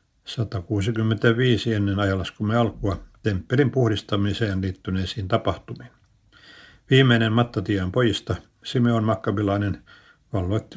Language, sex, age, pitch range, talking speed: Finnish, male, 60-79, 95-115 Hz, 80 wpm